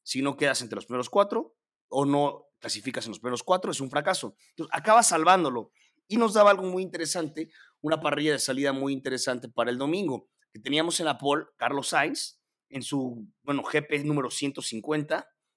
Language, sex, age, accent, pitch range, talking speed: Spanish, male, 30-49, Mexican, 140-180 Hz, 180 wpm